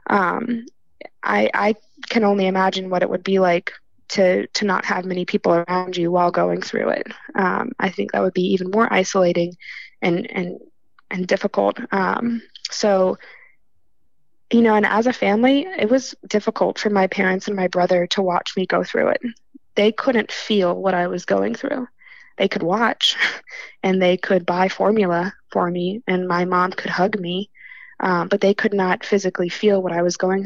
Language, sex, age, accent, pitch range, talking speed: English, female, 20-39, American, 185-215 Hz, 185 wpm